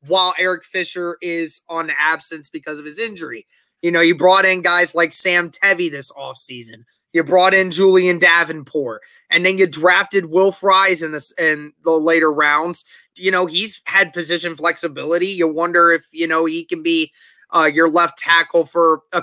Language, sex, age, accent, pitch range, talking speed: English, male, 20-39, American, 155-185 Hz, 185 wpm